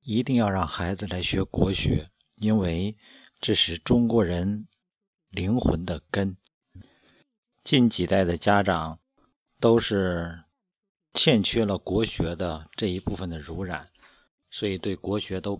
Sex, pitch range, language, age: male, 90-120 Hz, Chinese, 50-69